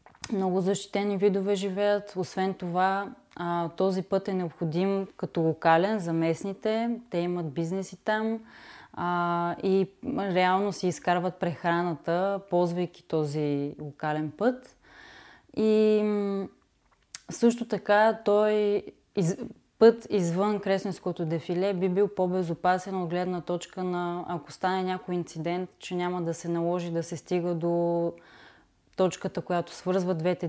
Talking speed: 115 wpm